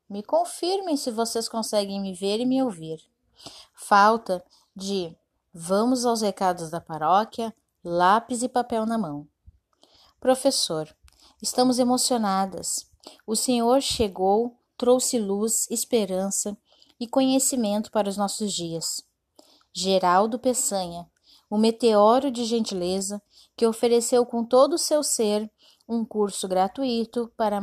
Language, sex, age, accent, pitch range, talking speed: Portuguese, female, 10-29, Brazilian, 195-245 Hz, 115 wpm